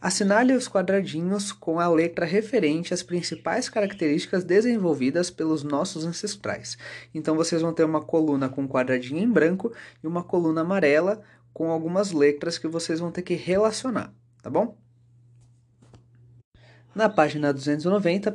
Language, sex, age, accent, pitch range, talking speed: Portuguese, male, 20-39, Brazilian, 135-180 Hz, 140 wpm